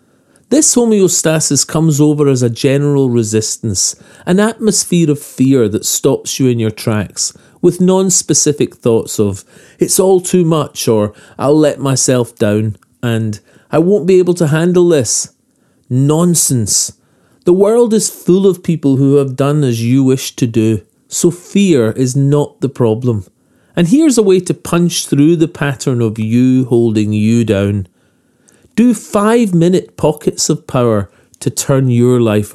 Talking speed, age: 155 wpm, 40-59